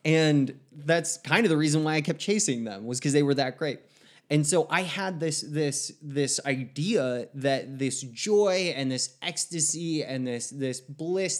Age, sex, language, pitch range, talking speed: 20-39, male, English, 125-150 Hz, 185 wpm